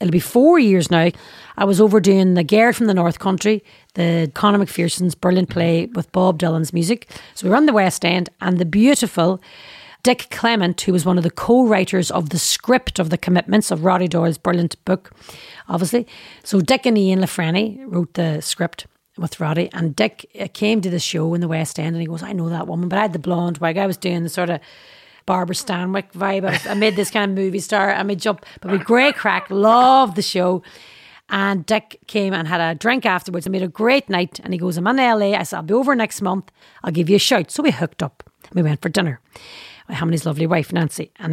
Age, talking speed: 40-59, 235 wpm